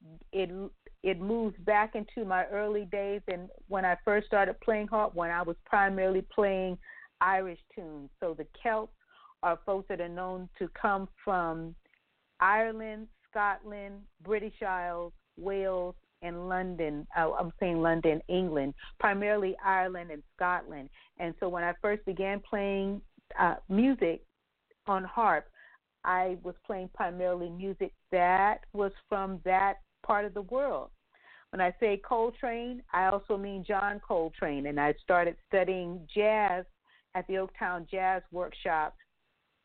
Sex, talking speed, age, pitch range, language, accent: female, 140 wpm, 40-59, 175-205 Hz, English, American